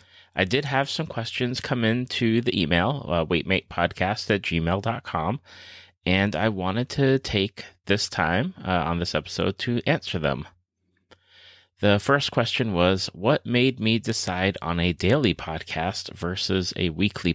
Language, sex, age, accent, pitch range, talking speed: English, male, 30-49, American, 90-120 Hz, 145 wpm